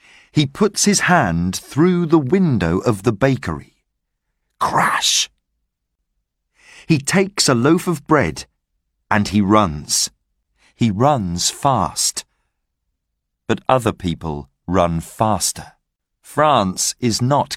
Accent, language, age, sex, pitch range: British, Chinese, 40-59, male, 90-150 Hz